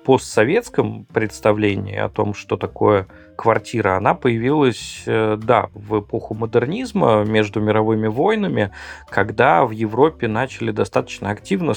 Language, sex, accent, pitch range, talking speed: Russian, male, native, 105-115 Hz, 110 wpm